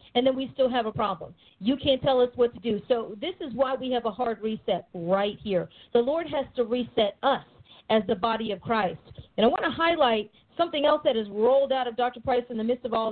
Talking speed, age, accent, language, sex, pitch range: 250 wpm, 40-59, American, English, female, 220-275 Hz